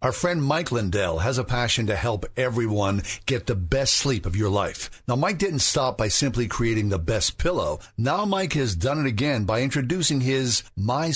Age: 50-69